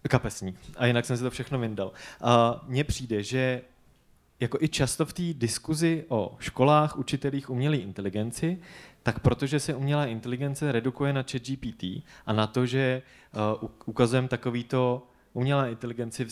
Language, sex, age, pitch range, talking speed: Czech, male, 20-39, 110-135 Hz, 140 wpm